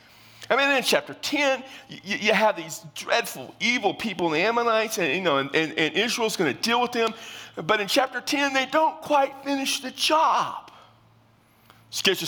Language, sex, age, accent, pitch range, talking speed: English, male, 40-59, American, 160-255 Hz, 175 wpm